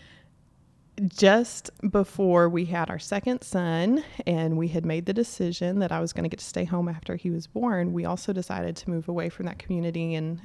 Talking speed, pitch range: 205 wpm, 160-185 Hz